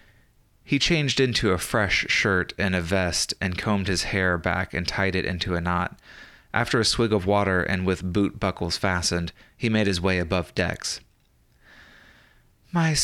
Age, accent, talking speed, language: 30-49, American, 170 wpm, English